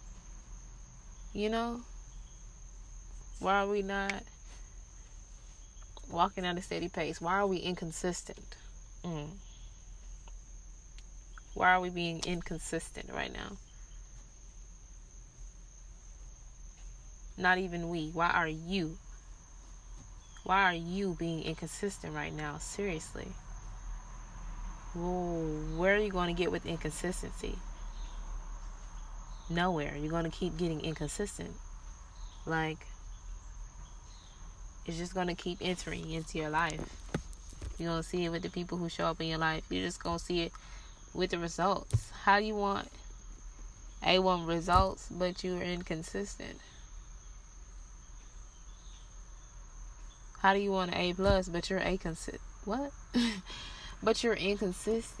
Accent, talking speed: American, 115 wpm